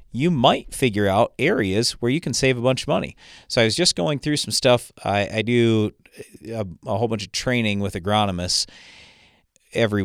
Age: 40-59